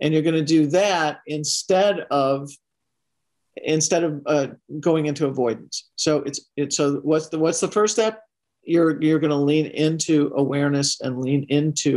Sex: male